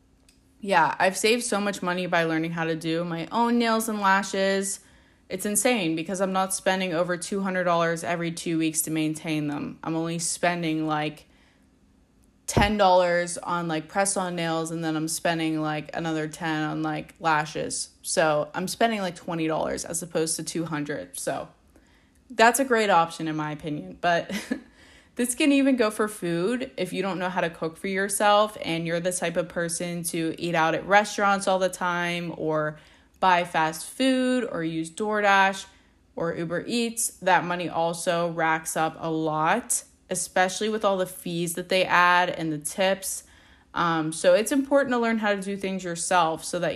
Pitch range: 160-195 Hz